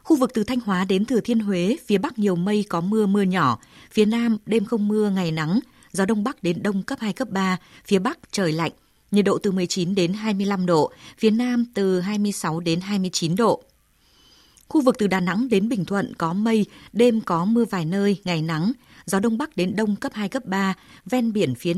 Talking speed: 220 wpm